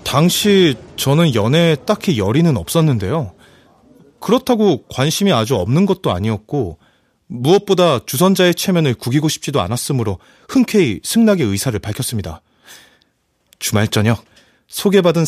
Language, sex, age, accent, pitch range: Korean, male, 30-49, native, 120-190 Hz